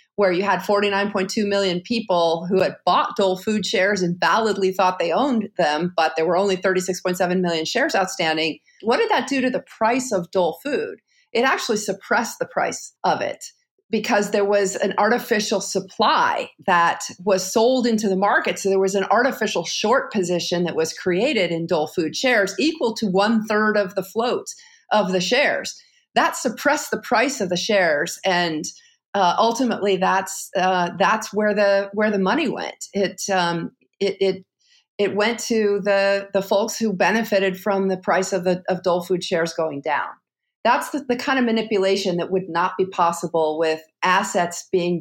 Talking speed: 180 wpm